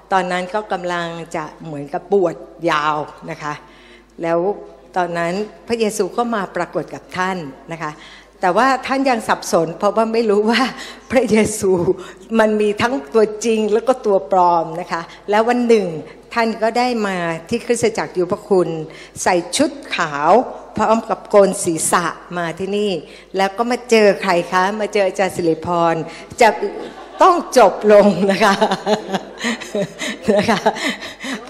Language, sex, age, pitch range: Thai, female, 60-79, 180-235 Hz